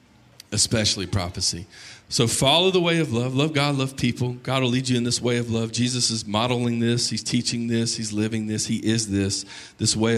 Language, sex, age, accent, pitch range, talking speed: English, male, 40-59, American, 105-135 Hz, 210 wpm